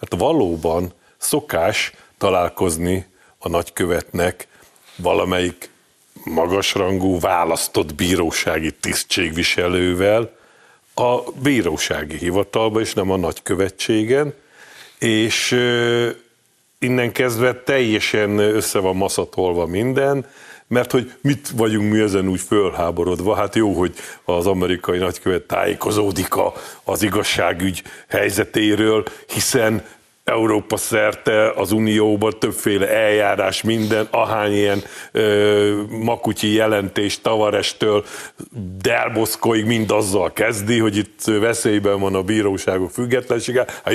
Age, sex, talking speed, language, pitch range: 50-69, male, 95 wpm, Hungarian, 100-120 Hz